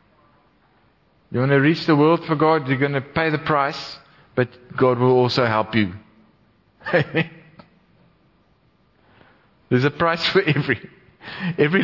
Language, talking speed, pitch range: English, 130 wpm, 135-170 Hz